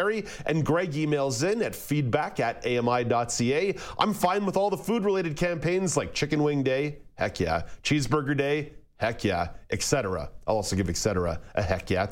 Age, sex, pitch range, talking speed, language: 40-59, male, 100-150 Hz, 170 wpm, English